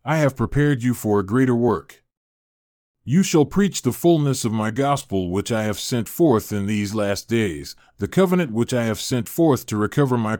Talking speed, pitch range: 200 wpm, 110-140 Hz